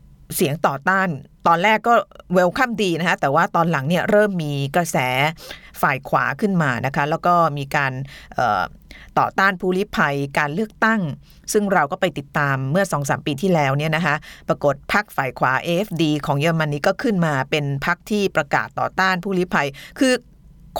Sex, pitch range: female, 145-190 Hz